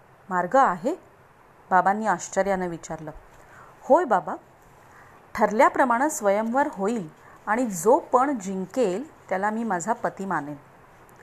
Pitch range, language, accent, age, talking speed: 180-270 Hz, Marathi, native, 30-49, 100 wpm